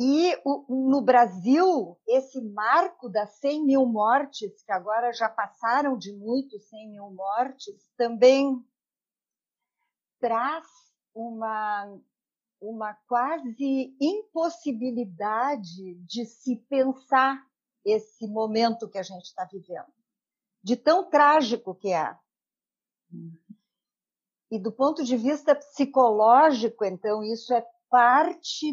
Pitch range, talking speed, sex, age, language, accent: 215-275 Hz, 100 wpm, female, 50-69, Portuguese, Brazilian